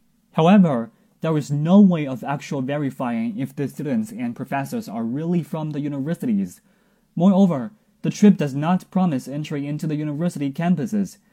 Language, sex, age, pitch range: Chinese, male, 20-39, 150-220 Hz